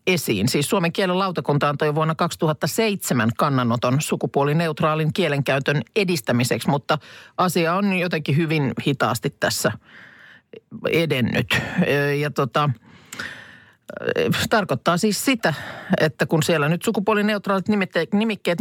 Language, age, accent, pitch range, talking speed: Finnish, 50-69, native, 145-185 Hz, 105 wpm